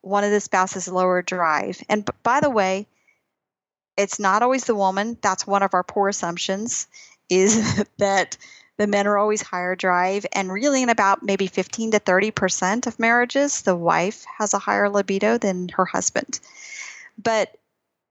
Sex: female